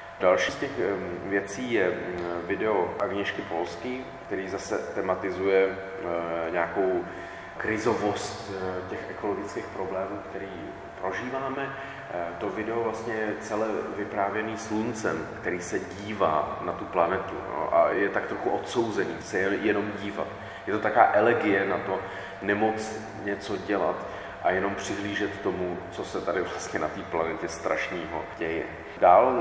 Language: Czech